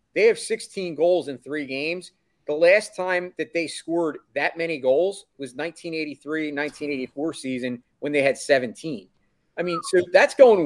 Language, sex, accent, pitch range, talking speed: English, male, American, 140-180 Hz, 160 wpm